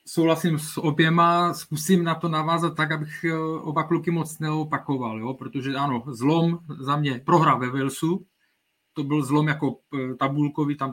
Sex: male